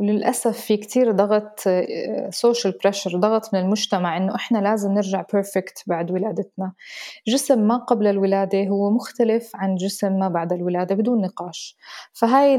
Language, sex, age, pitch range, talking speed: Arabic, female, 20-39, 195-235 Hz, 125 wpm